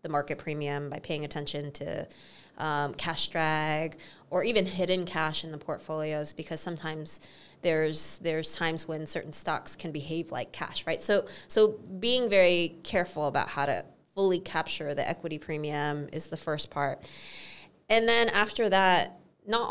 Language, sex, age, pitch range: English, female, 20-39, 160-200 Hz